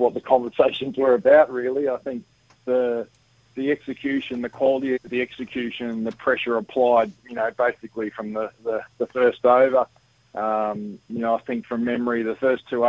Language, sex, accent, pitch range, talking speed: English, male, Australian, 115-125 Hz, 175 wpm